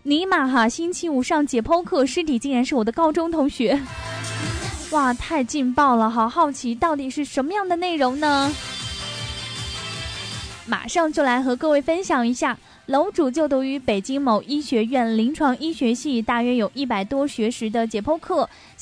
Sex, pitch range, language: female, 230-300 Hz, Chinese